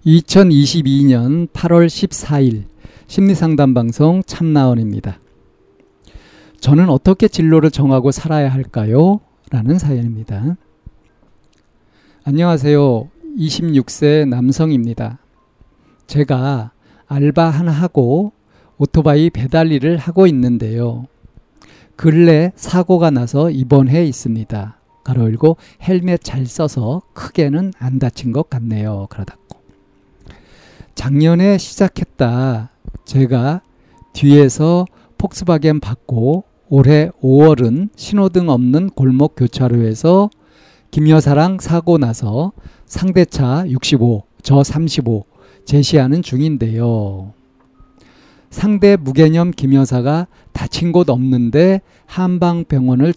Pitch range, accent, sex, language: 125-165 Hz, native, male, Korean